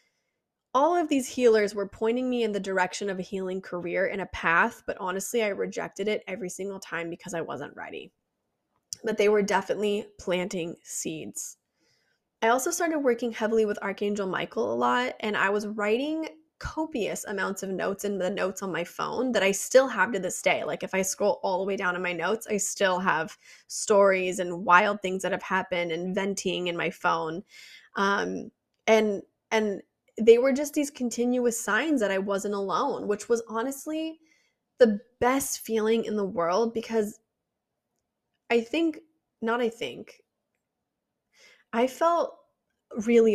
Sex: female